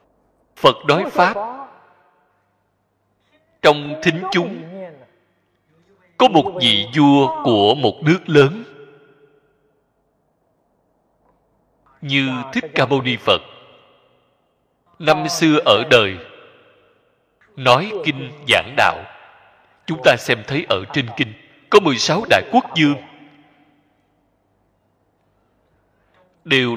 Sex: male